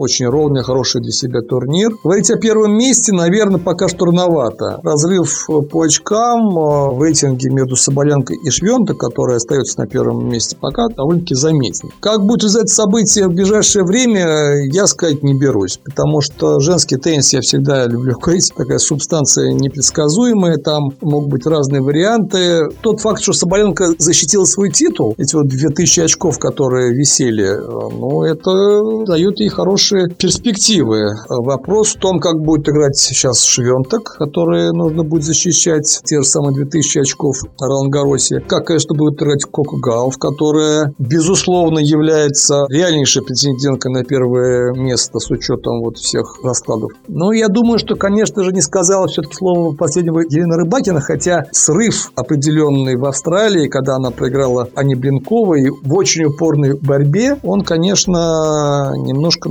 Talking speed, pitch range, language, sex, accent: 145 wpm, 140-185 Hz, Russian, male, native